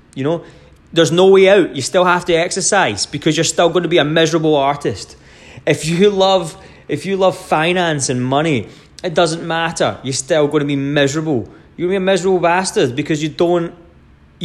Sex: male